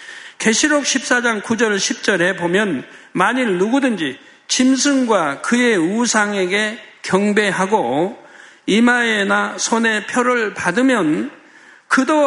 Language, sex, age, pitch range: Korean, male, 50-69, 185-240 Hz